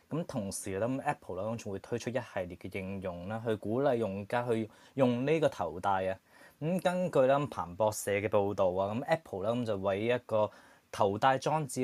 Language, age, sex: Chinese, 20-39, male